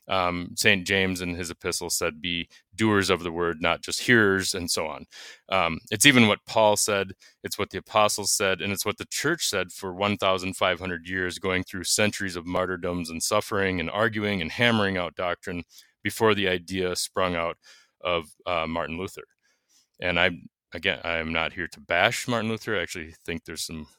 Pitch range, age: 85-105 Hz, 20-39